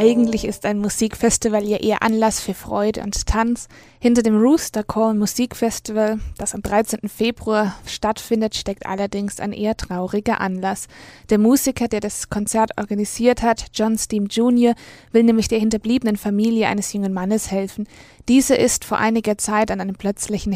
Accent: German